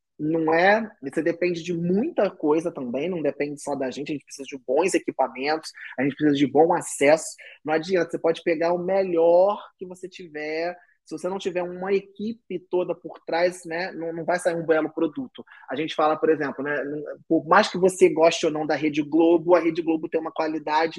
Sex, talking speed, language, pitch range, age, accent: male, 210 wpm, Portuguese, 155-195 Hz, 20-39, Brazilian